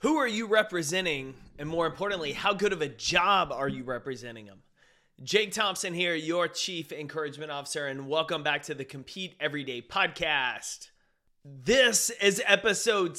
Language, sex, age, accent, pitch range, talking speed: English, male, 30-49, American, 145-180 Hz, 155 wpm